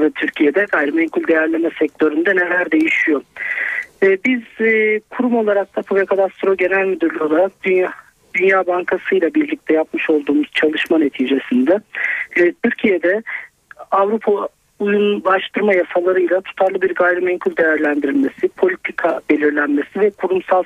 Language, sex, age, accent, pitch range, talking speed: Turkish, male, 50-69, native, 160-230 Hz, 115 wpm